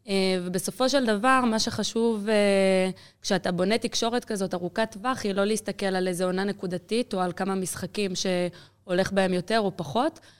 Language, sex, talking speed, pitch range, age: Hebrew, female, 165 wpm, 185-225 Hz, 20-39